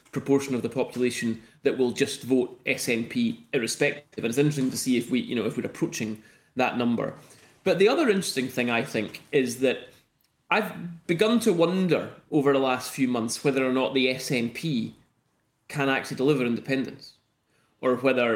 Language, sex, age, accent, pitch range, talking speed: English, male, 30-49, British, 125-160 Hz, 175 wpm